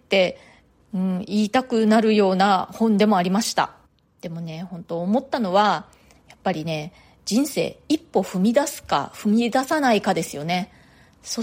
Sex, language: female, Japanese